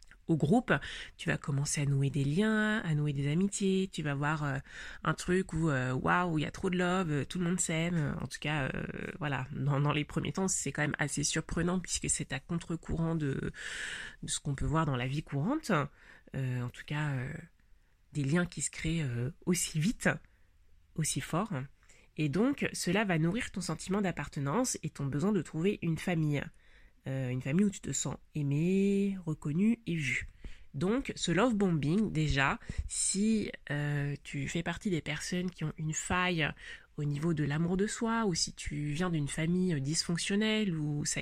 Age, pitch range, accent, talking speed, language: 30-49, 145-185 Hz, French, 195 wpm, French